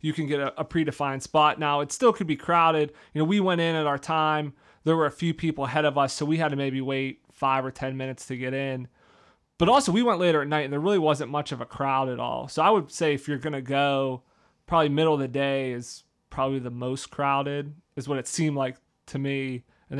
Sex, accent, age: male, American, 30-49